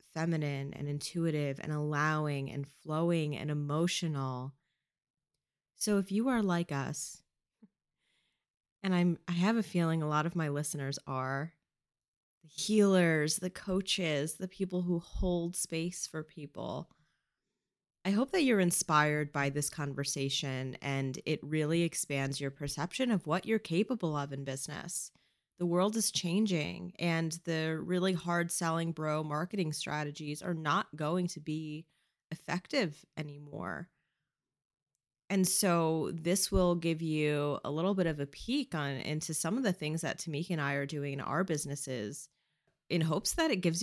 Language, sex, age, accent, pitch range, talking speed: English, female, 30-49, American, 145-175 Hz, 150 wpm